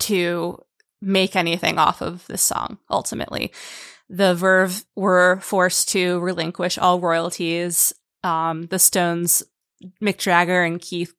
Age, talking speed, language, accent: 20-39, 125 wpm, English, American